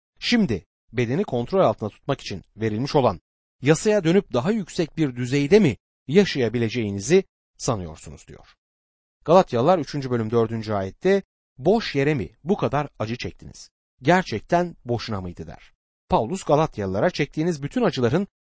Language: Turkish